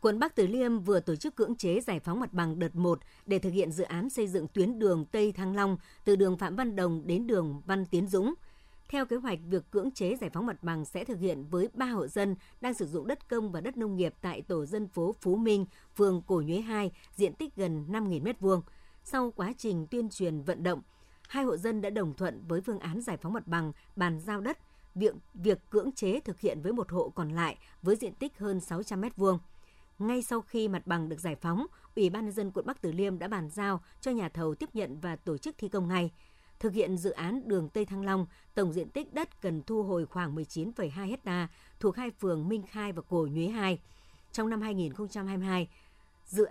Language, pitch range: Vietnamese, 175-220 Hz